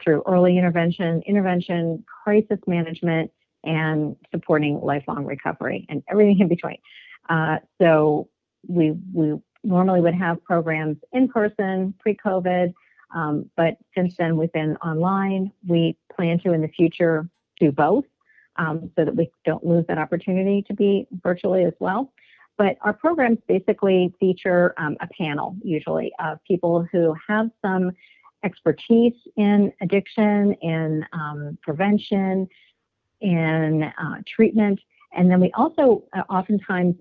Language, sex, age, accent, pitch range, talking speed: English, female, 50-69, American, 160-195 Hz, 130 wpm